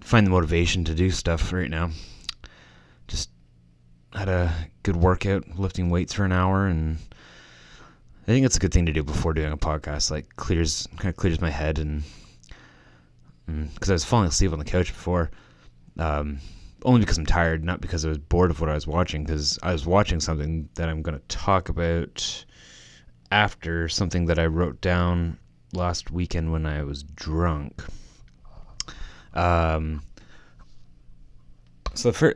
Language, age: English, 20-39